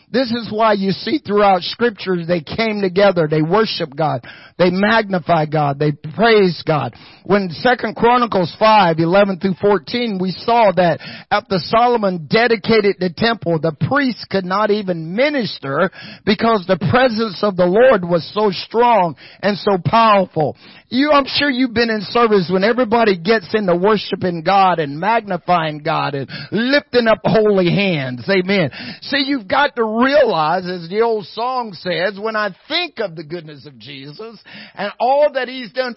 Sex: male